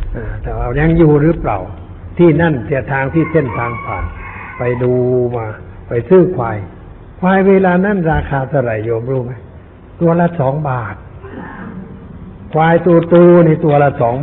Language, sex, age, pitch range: Thai, male, 60-79, 110-160 Hz